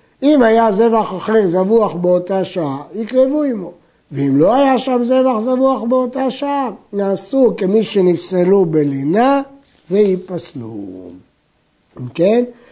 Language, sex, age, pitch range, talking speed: Hebrew, male, 60-79, 170-235 Hz, 110 wpm